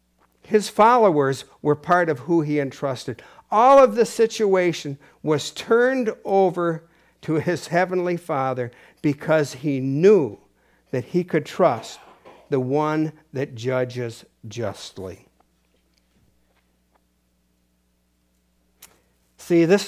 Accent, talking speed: American, 100 wpm